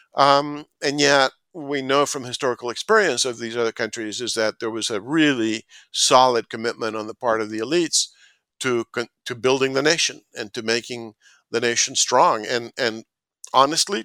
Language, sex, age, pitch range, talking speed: English, male, 50-69, 115-135 Hz, 170 wpm